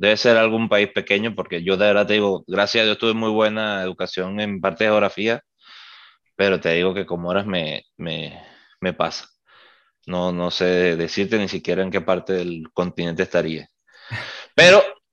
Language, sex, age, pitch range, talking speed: Spanish, male, 20-39, 95-115 Hz, 180 wpm